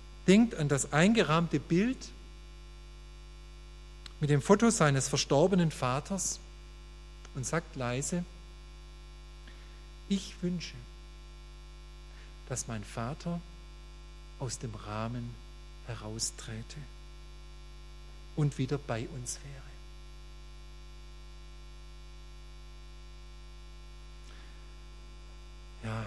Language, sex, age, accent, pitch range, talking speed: German, male, 50-69, German, 135-170 Hz, 65 wpm